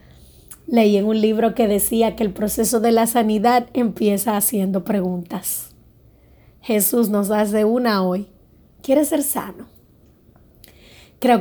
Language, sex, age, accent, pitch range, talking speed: Spanish, female, 30-49, American, 205-240 Hz, 125 wpm